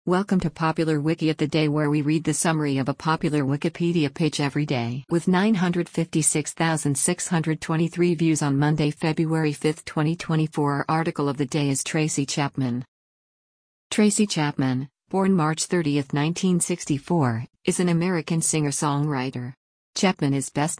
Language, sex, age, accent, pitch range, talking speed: English, female, 50-69, American, 145-170 Hz, 140 wpm